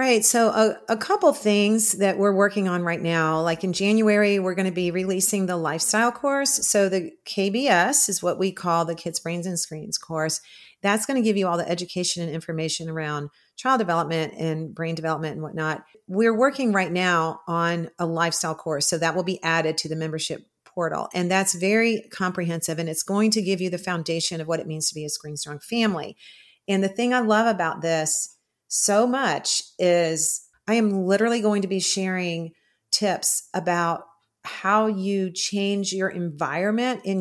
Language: English